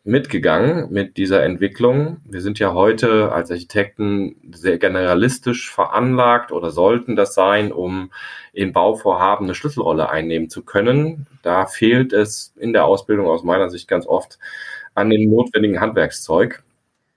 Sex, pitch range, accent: male, 95-120 Hz, German